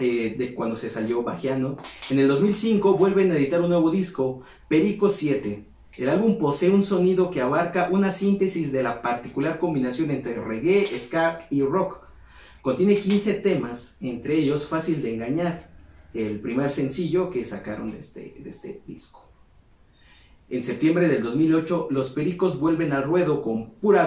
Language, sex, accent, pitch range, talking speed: Spanish, male, Mexican, 130-175 Hz, 155 wpm